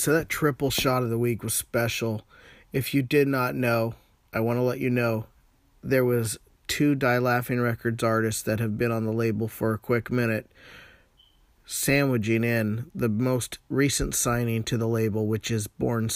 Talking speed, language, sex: 180 wpm, English, male